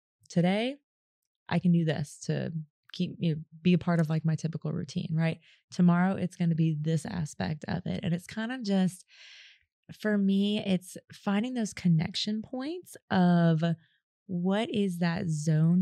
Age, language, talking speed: 20-39, English, 165 wpm